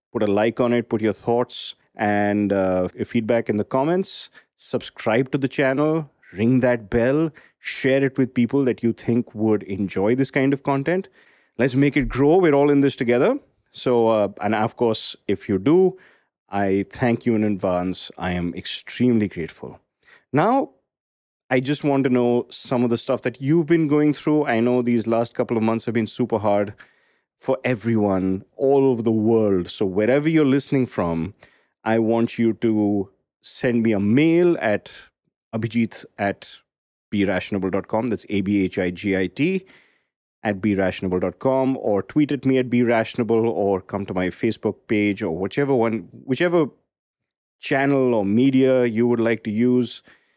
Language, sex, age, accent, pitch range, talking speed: English, male, 30-49, Indian, 105-135 Hz, 165 wpm